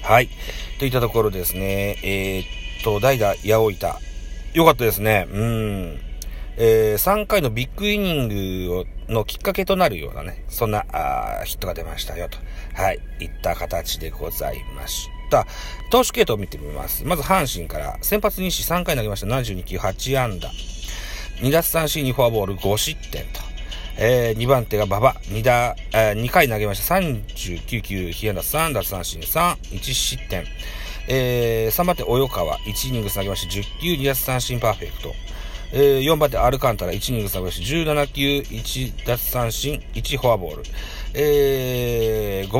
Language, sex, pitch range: Japanese, male, 95-135 Hz